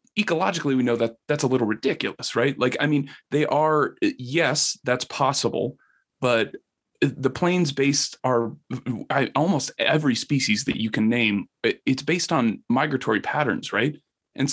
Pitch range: 115-150 Hz